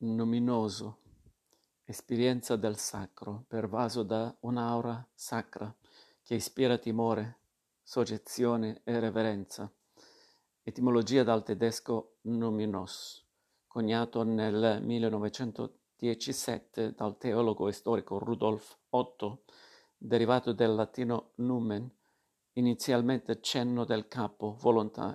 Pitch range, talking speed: 110-125 Hz, 85 wpm